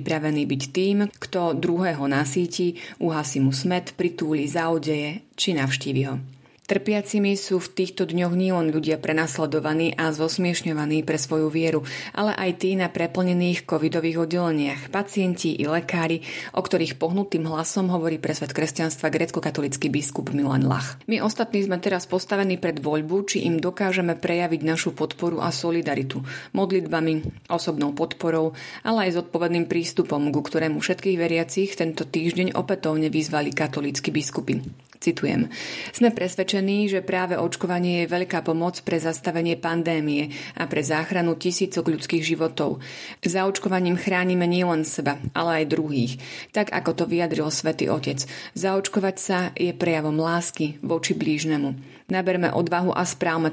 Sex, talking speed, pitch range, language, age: female, 140 wpm, 155-180 Hz, Slovak, 30-49